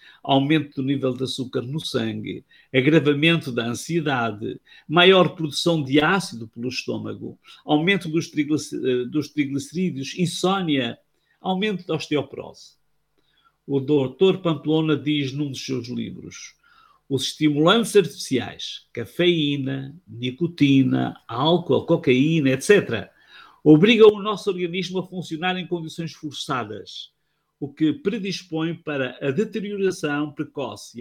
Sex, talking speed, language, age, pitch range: male, 105 wpm, Portuguese, 50-69, 135-170 Hz